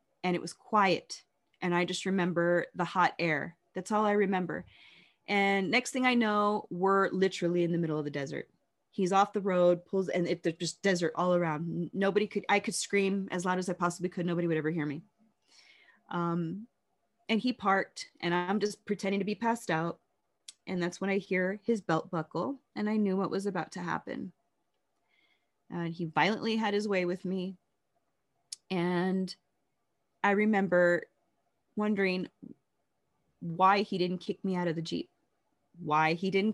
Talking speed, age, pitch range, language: 175 wpm, 20-39, 175-210 Hz, English